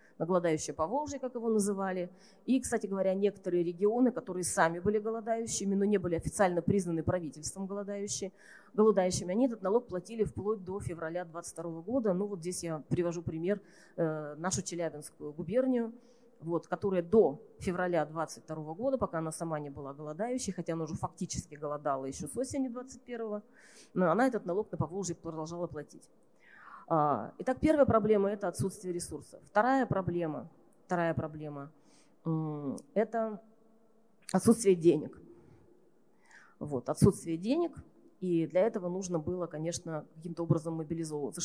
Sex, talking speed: female, 140 wpm